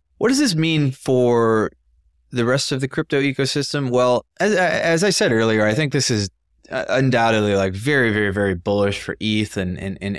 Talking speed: 190 wpm